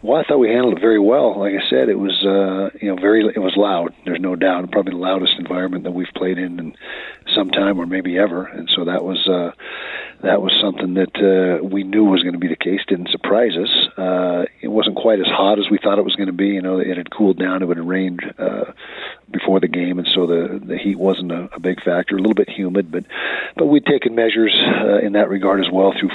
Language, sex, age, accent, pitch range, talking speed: English, male, 50-69, American, 90-100 Hz, 255 wpm